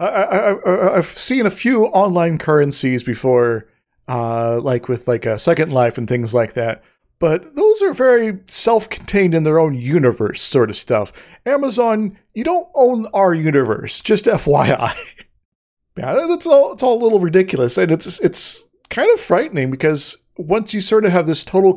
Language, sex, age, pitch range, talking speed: English, male, 40-59, 130-185 Hz, 180 wpm